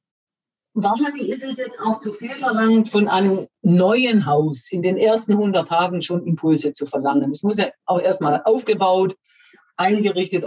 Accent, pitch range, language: German, 170-225 Hz, German